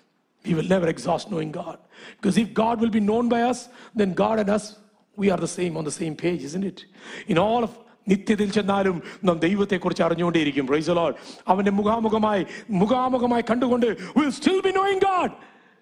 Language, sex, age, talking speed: English, male, 60-79, 140 wpm